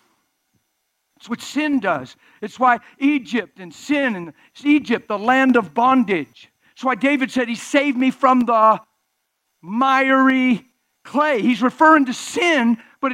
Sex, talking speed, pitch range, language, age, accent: male, 140 wpm, 240-305 Hz, English, 50-69, American